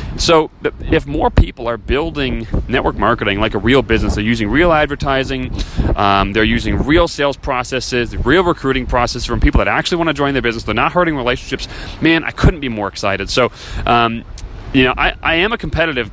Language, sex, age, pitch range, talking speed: English, male, 30-49, 110-130 Hz, 195 wpm